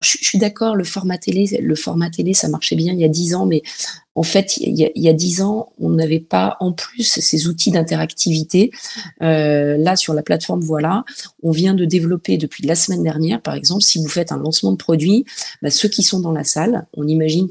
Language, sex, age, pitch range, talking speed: French, female, 30-49, 155-190 Hz, 225 wpm